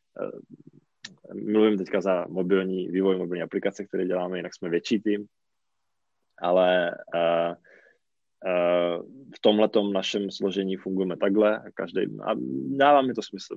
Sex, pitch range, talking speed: male, 95-115 Hz, 125 wpm